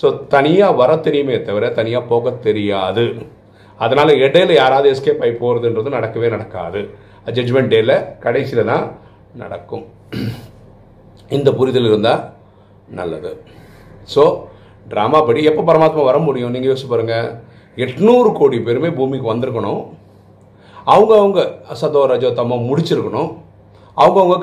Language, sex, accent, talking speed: Tamil, male, native, 105 wpm